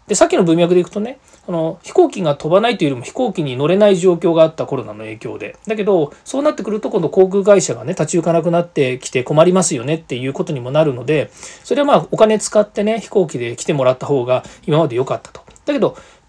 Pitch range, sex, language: 140-215 Hz, male, Japanese